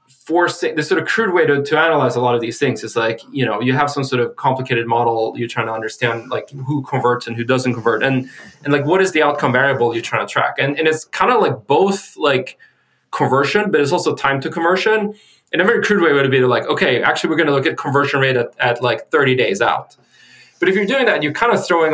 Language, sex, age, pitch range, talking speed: English, male, 20-39, 125-150 Hz, 265 wpm